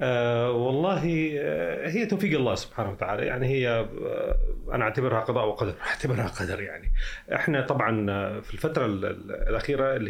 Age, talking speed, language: 30-49, 125 wpm, Arabic